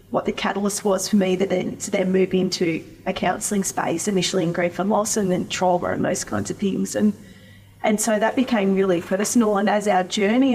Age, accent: 30-49, Australian